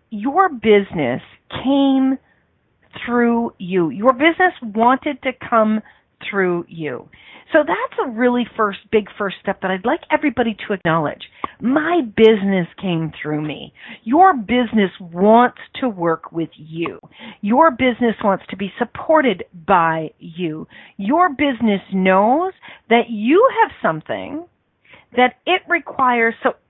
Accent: American